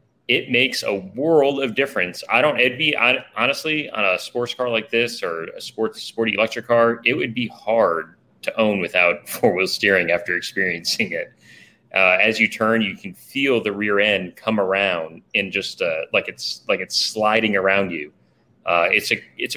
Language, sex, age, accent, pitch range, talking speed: English, male, 30-49, American, 95-120 Hz, 190 wpm